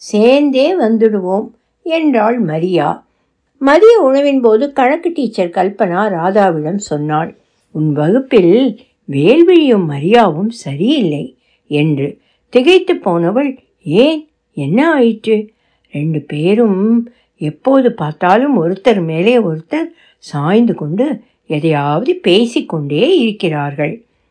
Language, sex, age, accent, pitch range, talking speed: Tamil, female, 60-79, native, 175-265 Hz, 85 wpm